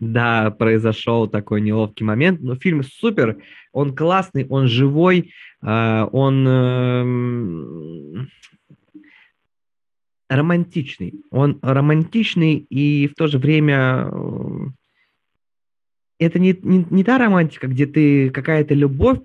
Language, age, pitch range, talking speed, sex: Russian, 20-39, 100-140 Hz, 95 wpm, male